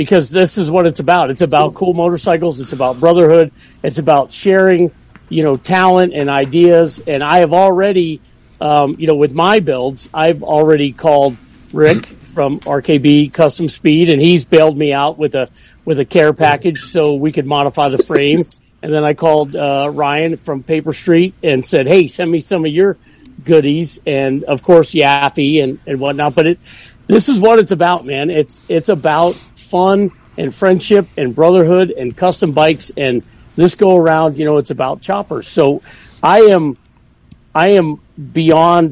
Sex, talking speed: male, 175 wpm